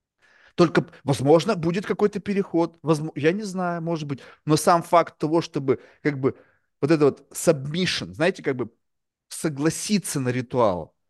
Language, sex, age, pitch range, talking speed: Russian, male, 30-49, 140-185 Hz, 145 wpm